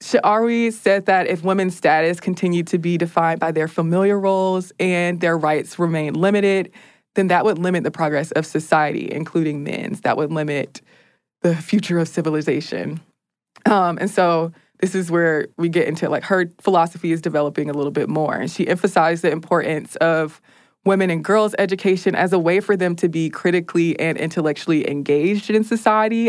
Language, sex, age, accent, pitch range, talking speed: English, female, 20-39, American, 155-190 Hz, 175 wpm